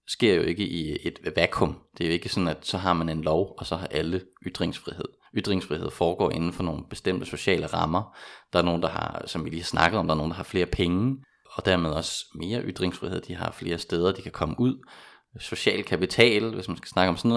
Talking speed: 230 wpm